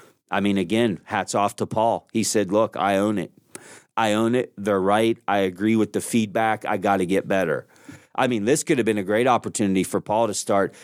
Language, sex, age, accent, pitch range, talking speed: English, male, 40-59, American, 105-130 Hz, 225 wpm